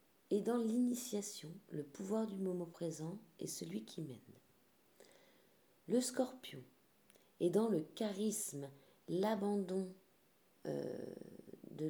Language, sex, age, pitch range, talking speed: French, female, 40-59, 140-195 Hz, 100 wpm